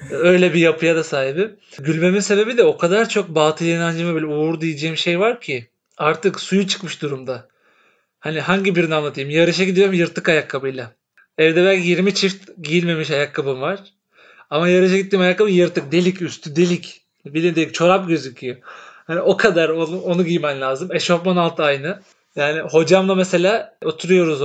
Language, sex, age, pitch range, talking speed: Turkish, male, 40-59, 150-190 Hz, 155 wpm